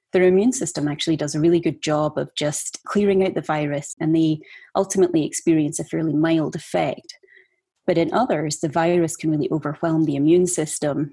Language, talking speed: English, 185 wpm